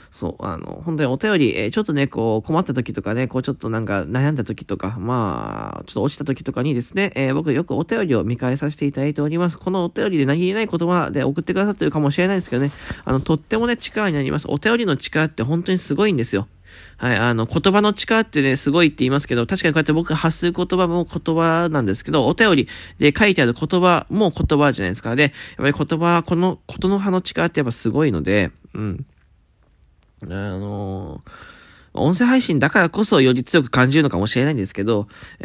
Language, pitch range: Japanese, 110-170 Hz